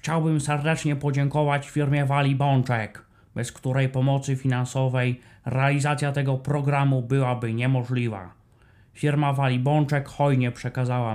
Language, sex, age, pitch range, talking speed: Polish, male, 30-49, 120-140 Hz, 110 wpm